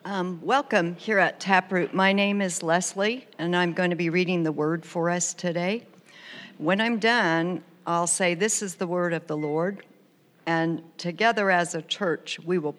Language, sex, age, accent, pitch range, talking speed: English, female, 60-79, American, 160-195 Hz, 185 wpm